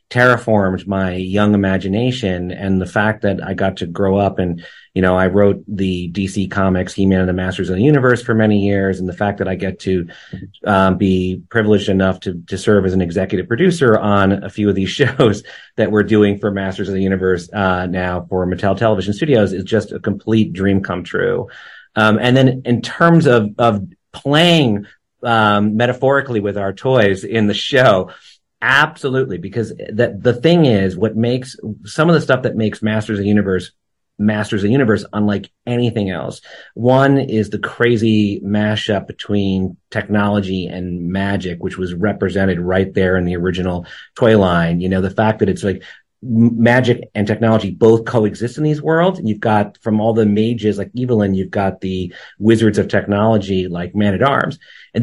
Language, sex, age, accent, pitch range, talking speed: English, male, 30-49, American, 95-120 Hz, 185 wpm